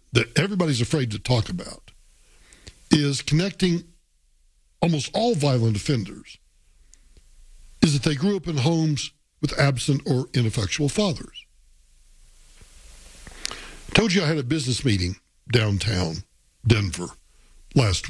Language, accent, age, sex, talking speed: English, American, 60-79, male, 115 wpm